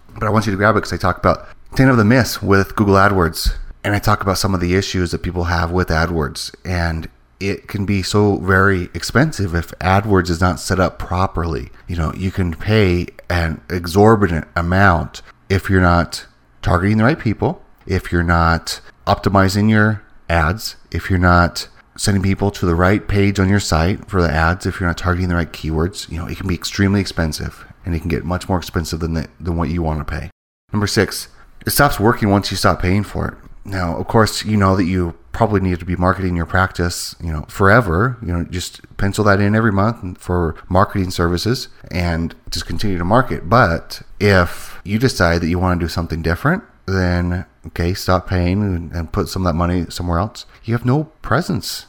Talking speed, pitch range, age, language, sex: 210 wpm, 85-100 Hz, 30-49, English, male